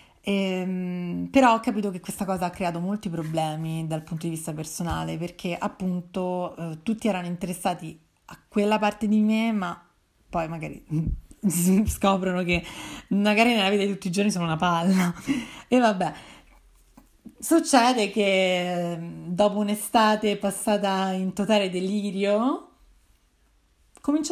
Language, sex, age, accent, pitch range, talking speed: Italian, female, 30-49, native, 175-225 Hz, 125 wpm